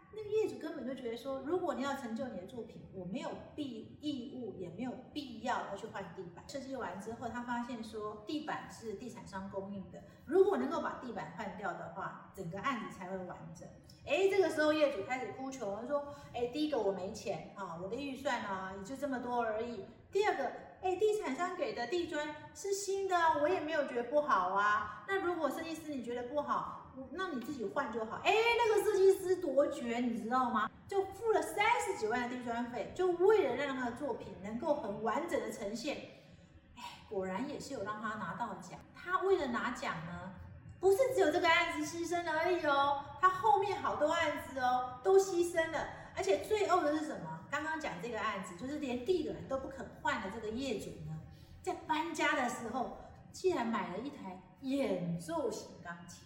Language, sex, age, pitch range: Chinese, female, 30-49, 220-330 Hz